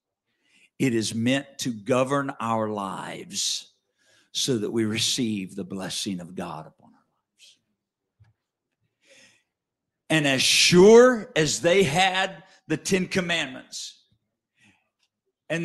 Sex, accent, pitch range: male, American, 130-215 Hz